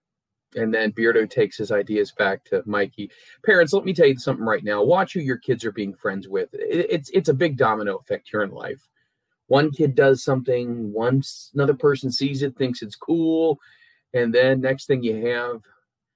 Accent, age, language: American, 30-49, English